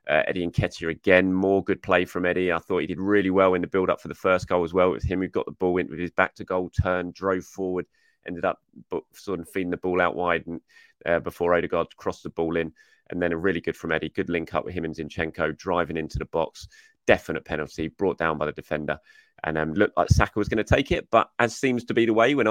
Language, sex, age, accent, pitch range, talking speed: English, male, 20-39, British, 85-100 Hz, 260 wpm